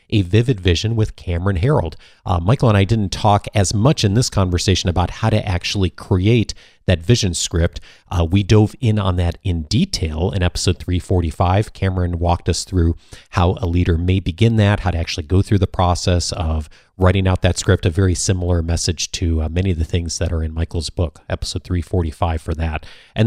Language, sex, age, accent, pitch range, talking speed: English, male, 40-59, American, 85-110 Hz, 200 wpm